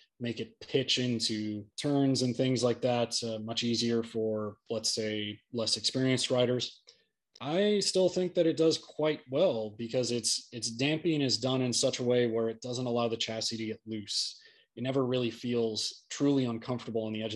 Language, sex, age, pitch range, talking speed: English, male, 20-39, 110-130 Hz, 185 wpm